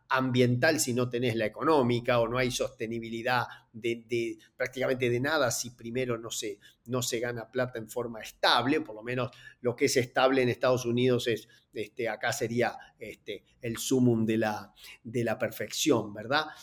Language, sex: Spanish, male